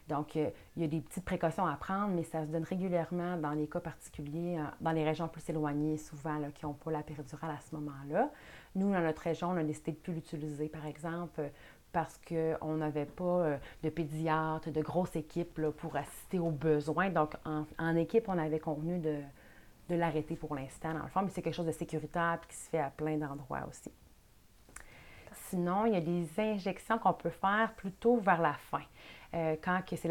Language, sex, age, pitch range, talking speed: French, female, 30-49, 155-180 Hz, 205 wpm